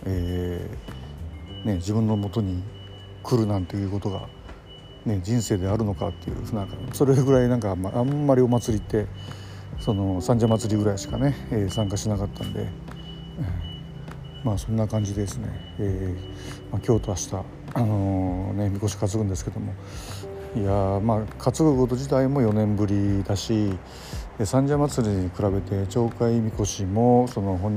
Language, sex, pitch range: Japanese, male, 95-115 Hz